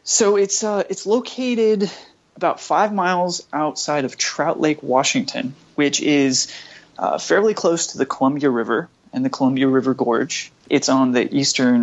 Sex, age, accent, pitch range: male, 20-39, American, 120-145 Hz